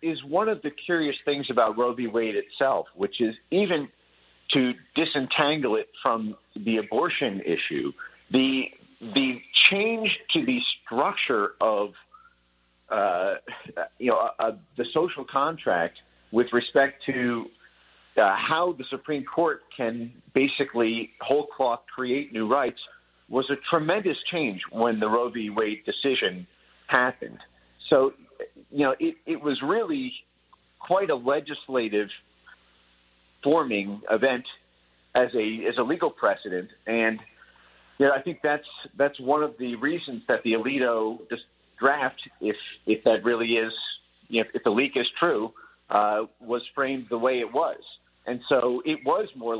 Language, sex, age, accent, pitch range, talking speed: English, male, 50-69, American, 110-145 Hz, 145 wpm